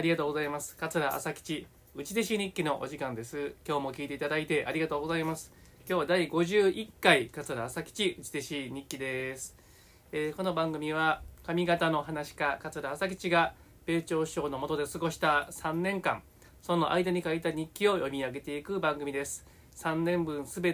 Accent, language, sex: native, Japanese, male